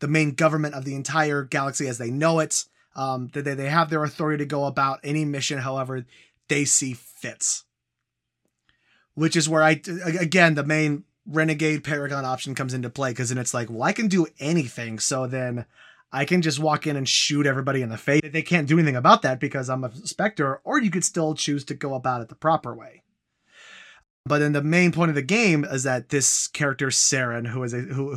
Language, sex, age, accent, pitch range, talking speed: English, male, 30-49, American, 130-155 Hz, 210 wpm